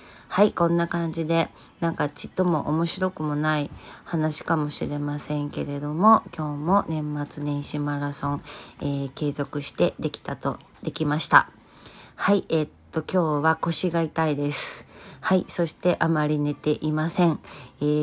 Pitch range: 145-165 Hz